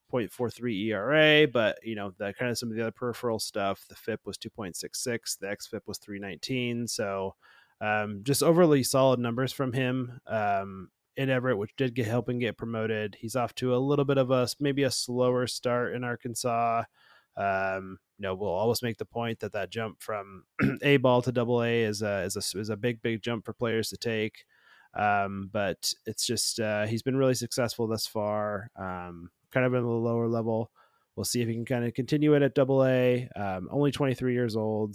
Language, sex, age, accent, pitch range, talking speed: English, male, 20-39, American, 105-130 Hz, 205 wpm